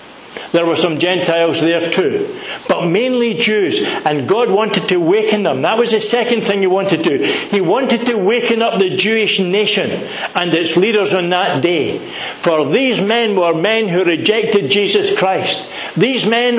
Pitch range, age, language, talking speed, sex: 170-230 Hz, 60-79, English, 175 wpm, male